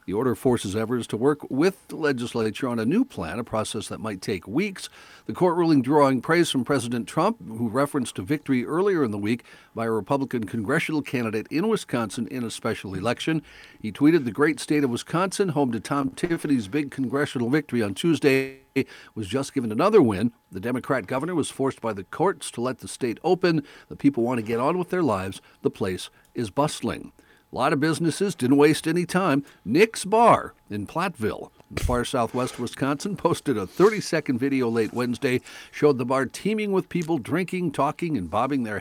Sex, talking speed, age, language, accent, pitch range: male, 195 wpm, 60-79, English, American, 110-150 Hz